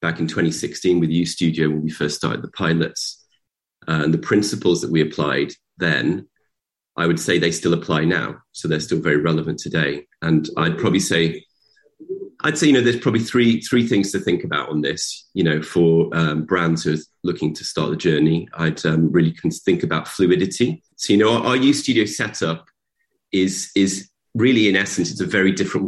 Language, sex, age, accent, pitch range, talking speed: English, male, 30-49, British, 80-95 Hz, 195 wpm